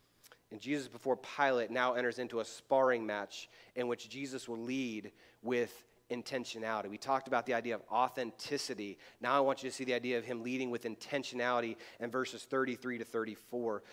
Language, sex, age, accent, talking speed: English, male, 30-49, American, 180 wpm